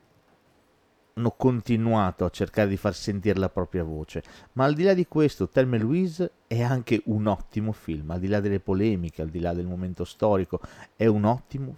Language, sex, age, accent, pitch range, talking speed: Italian, male, 50-69, native, 90-115 Hz, 190 wpm